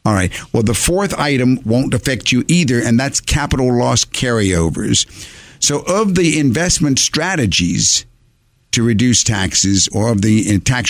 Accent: American